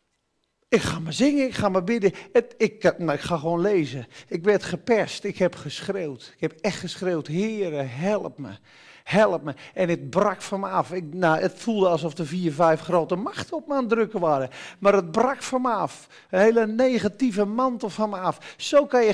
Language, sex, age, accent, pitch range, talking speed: Dutch, male, 40-59, Dutch, 185-250 Hz, 210 wpm